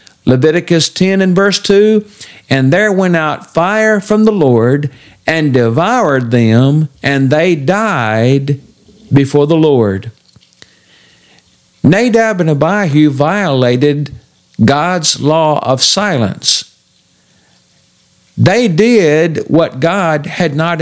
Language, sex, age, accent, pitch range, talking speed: English, male, 50-69, American, 135-185 Hz, 105 wpm